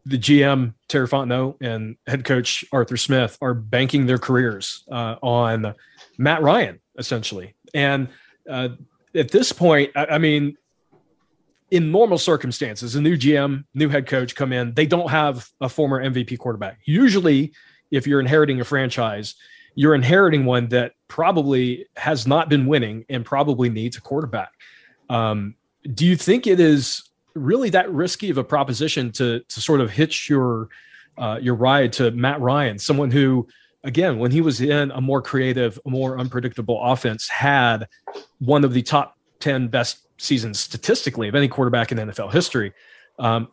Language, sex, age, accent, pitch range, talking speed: English, male, 30-49, American, 120-150 Hz, 160 wpm